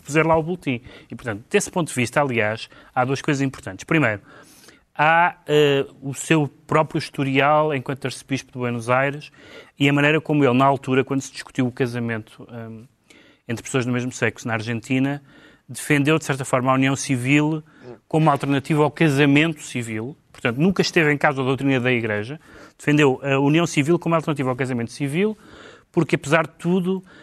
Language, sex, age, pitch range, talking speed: Portuguese, male, 30-49, 120-150 Hz, 180 wpm